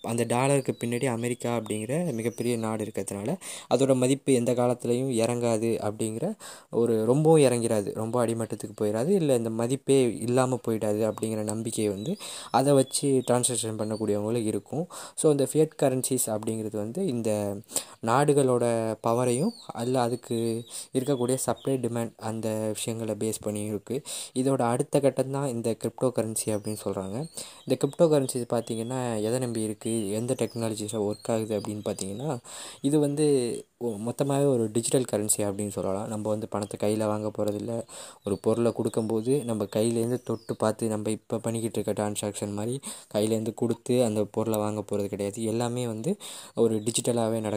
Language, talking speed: Tamil, 95 wpm